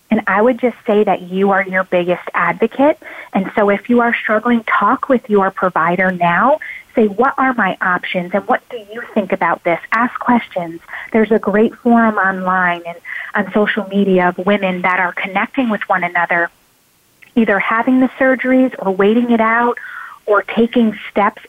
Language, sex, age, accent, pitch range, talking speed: English, female, 30-49, American, 195-245 Hz, 180 wpm